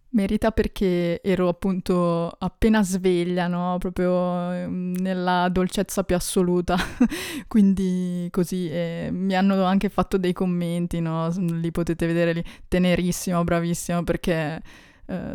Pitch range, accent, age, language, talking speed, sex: 175-195 Hz, native, 20-39, Italian, 115 wpm, female